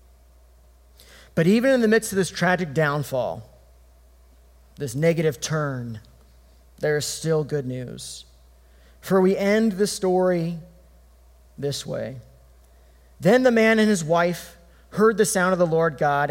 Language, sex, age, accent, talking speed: English, male, 30-49, American, 135 wpm